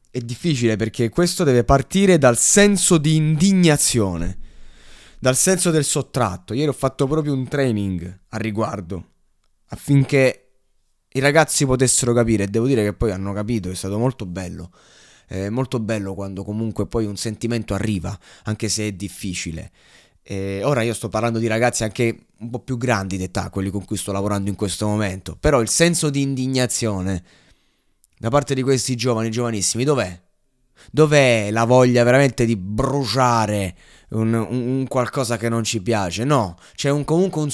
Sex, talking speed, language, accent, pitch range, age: male, 160 wpm, Italian, native, 105-140 Hz, 20-39